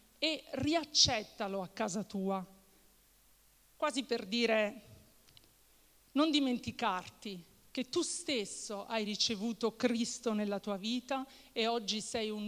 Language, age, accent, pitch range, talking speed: Italian, 50-69, native, 210-255 Hz, 110 wpm